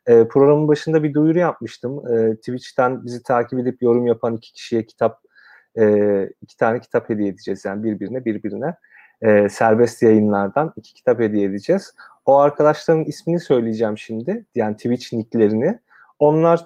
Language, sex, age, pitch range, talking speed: Turkish, male, 30-49, 110-150 Hz, 135 wpm